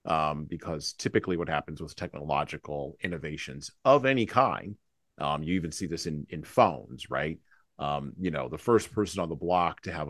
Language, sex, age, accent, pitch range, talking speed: English, male, 30-49, American, 80-95 Hz, 185 wpm